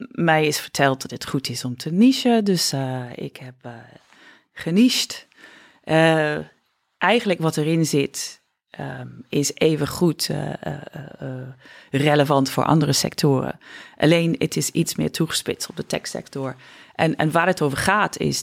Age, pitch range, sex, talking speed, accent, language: 40-59, 135-165 Hz, female, 155 wpm, Dutch, Dutch